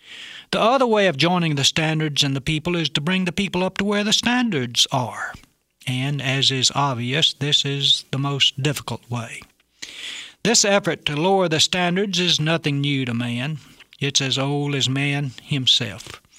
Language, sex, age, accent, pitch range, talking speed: English, male, 60-79, American, 130-170 Hz, 175 wpm